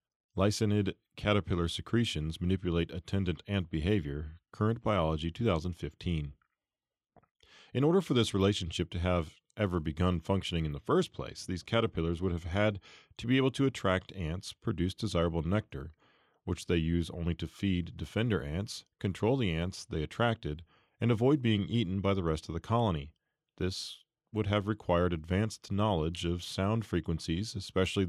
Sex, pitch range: male, 85-115 Hz